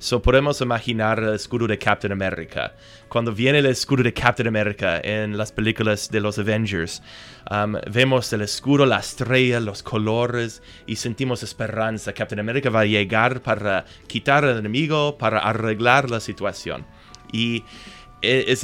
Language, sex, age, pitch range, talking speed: Spanish, male, 20-39, 105-120 Hz, 150 wpm